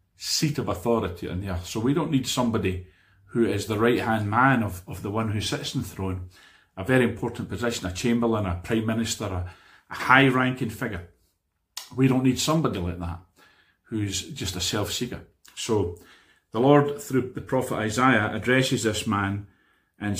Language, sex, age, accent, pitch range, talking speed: English, male, 40-59, British, 100-125 Hz, 175 wpm